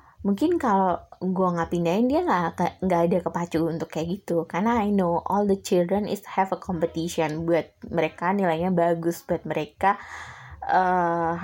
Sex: female